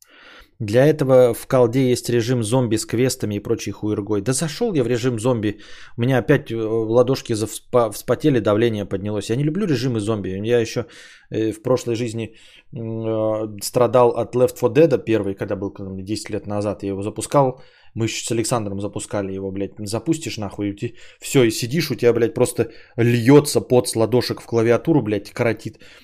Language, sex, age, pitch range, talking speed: Bulgarian, male, 20-39, 105-125 Hz, 175 wpm